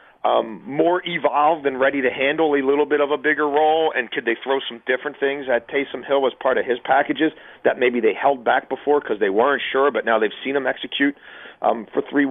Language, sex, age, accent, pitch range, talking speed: English, male, 40-59, American, 125-160 Hz, 235 wpm